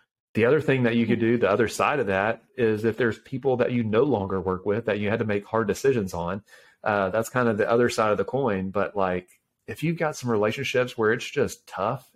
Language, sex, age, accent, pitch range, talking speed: English, male, 30-49, American, 100-115 Hz, 250 wpm